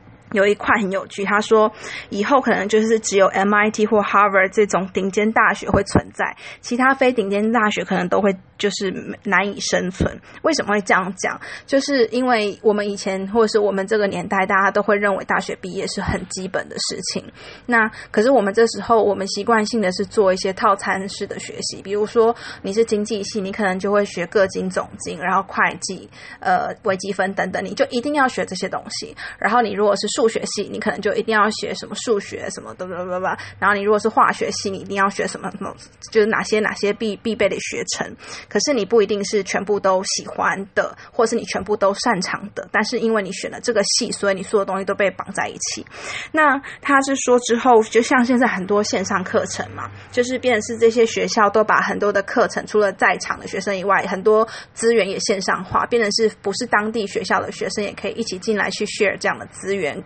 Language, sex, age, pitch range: English, female, 20-39, 195-225 Hz